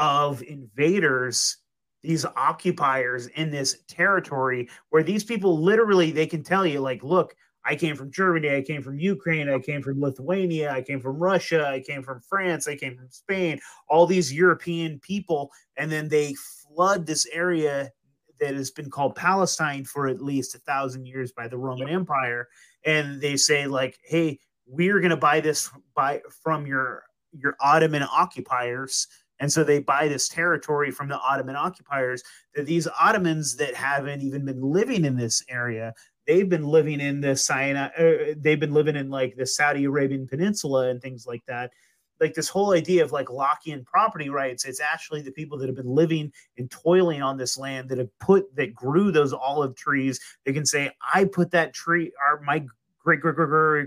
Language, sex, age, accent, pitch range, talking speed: English, male, 30-49, American, 135-165 Hz, 185 wpm